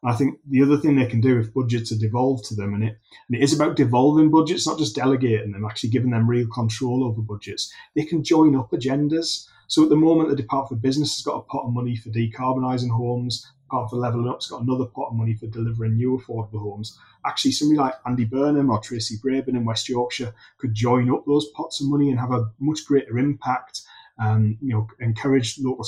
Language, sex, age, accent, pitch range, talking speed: English, male, 30-49, British, 115-135 Hz, 230 wpm